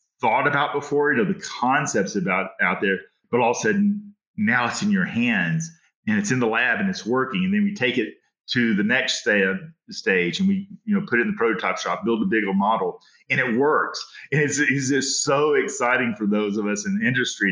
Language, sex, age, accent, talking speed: English, male, 40-59, American, 230 wpm